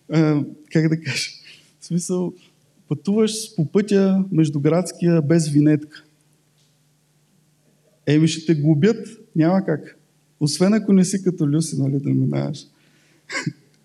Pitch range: 150-185 Hz